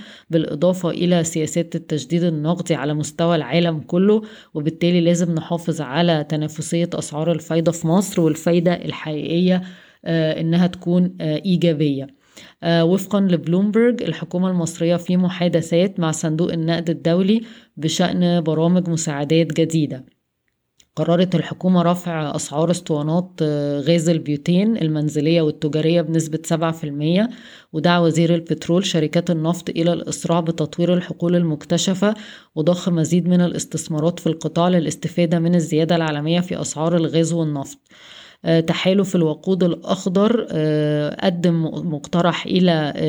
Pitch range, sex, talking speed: 160-175 Hz, female, 110 wpm